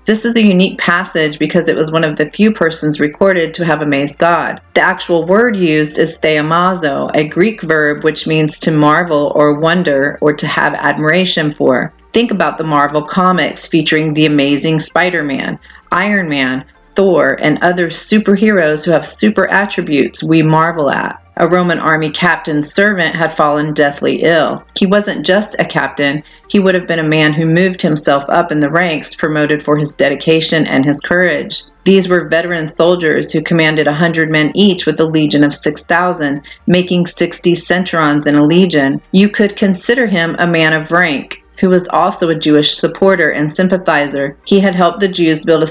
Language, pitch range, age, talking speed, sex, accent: English, 155-180 Hz, 40-59, 180 wpm, female, American